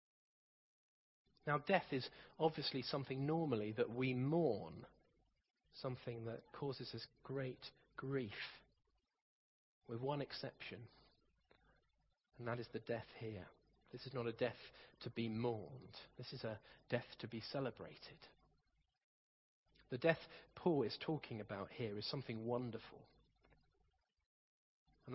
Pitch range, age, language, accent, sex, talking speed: 125-160 Hz, 40-59, English, British, male, 120 wpm